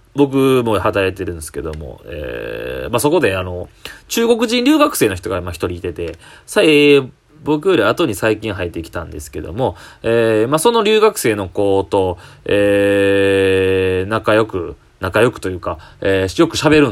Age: 20-39